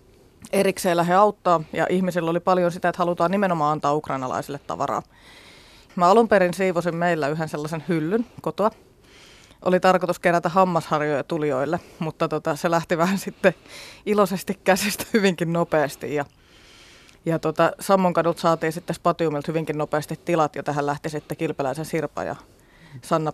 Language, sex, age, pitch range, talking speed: Finnish, female, 20-39, 150-175 Hz, 145 wpm